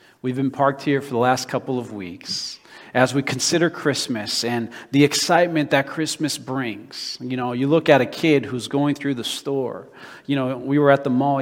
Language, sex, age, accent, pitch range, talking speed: English, male, 40-59, American, 125-155 Hz, 205 wpm